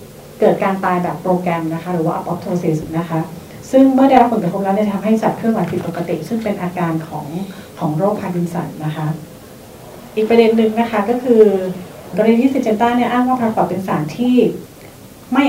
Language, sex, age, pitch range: Thai, female, 30-49, 175-220 Hz